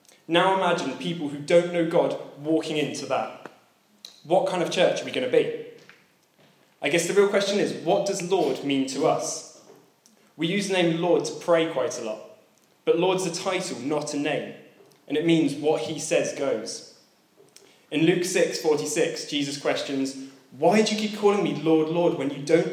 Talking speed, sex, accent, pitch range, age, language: 190 wpm, male, British, 145-180 Hz, 20-39, English